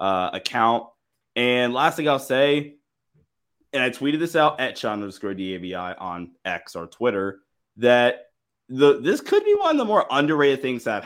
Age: 20-39